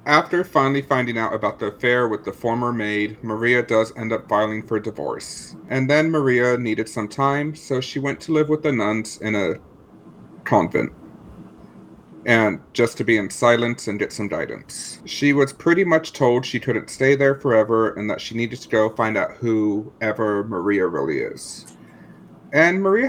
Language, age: English, 40-59